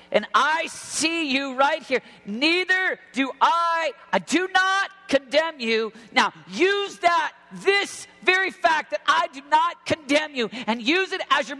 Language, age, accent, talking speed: English, 40-59, American, 160 wpm